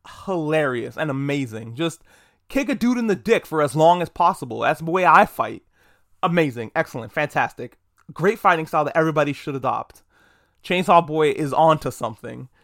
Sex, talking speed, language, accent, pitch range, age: male, 170 wpm, English, American, 140-185 Hz, 20-39